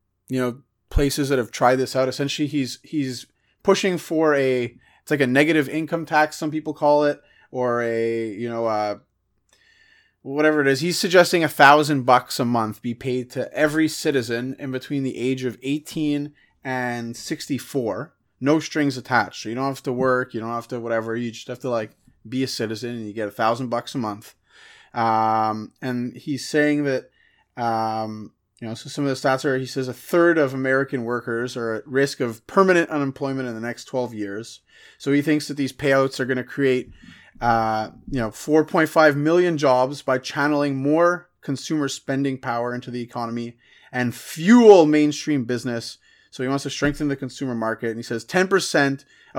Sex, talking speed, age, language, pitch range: male, 190 wpm, 30-49, English, 120-145 Hz